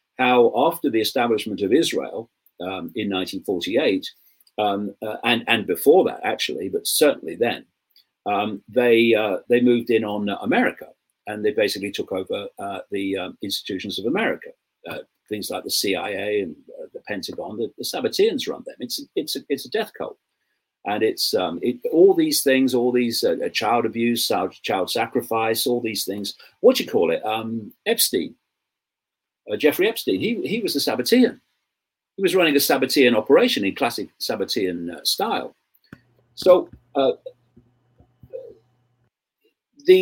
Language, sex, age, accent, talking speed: English, male, 50-69, British, 155 wpm